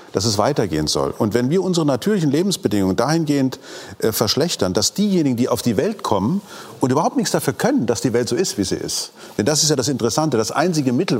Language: German